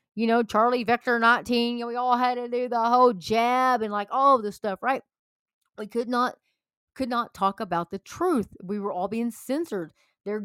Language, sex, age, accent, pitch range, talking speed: English, female, 30-49, American, 195-245 Hz, 220 wpm